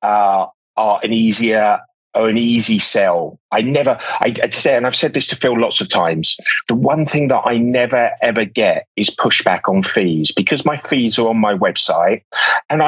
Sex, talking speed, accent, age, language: male, 195 wpm, British, 30-49, English